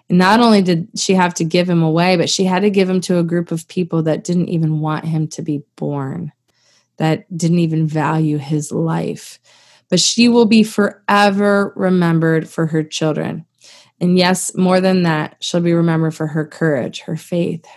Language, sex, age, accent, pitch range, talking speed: English, female, 20-39, American, 165-195 Hz, 190 wpm